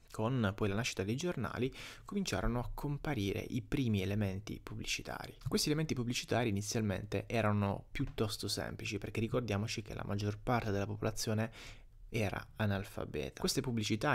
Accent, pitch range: native, 105-135 Hz